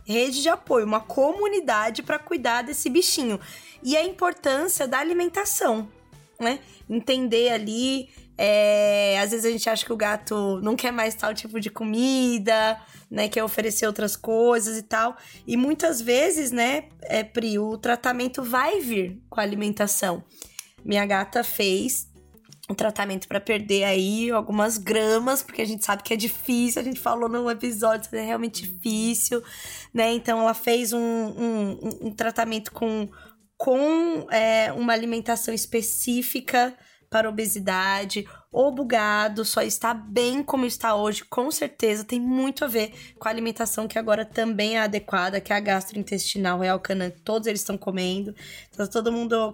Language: Portuguese